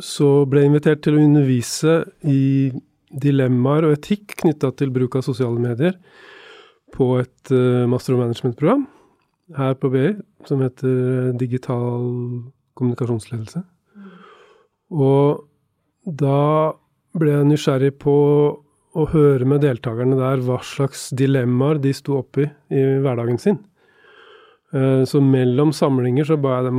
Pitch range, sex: 130-155 Hz, male